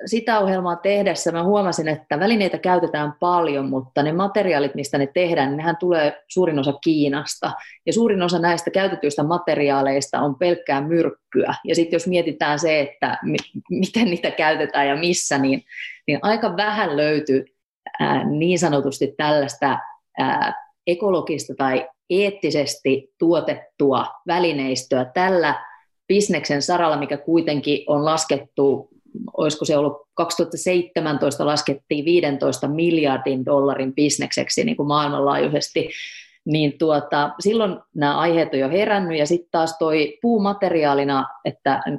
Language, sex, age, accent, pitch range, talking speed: Finnish, female, 30-49, native, 140-180 Hz, 125 wpm